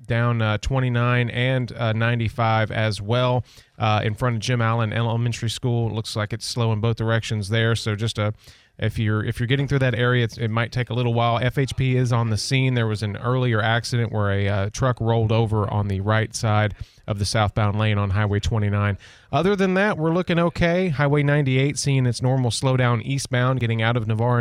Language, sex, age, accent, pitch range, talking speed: English, male, 30-49, American, 115-150 Hz, 215 wpm